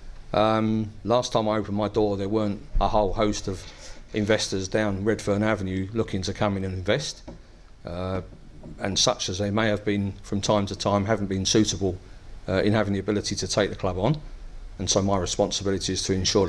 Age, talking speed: 40-59, 200 wpm